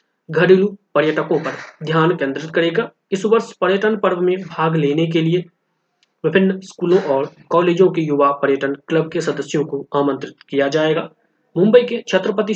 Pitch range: 145-180 Hz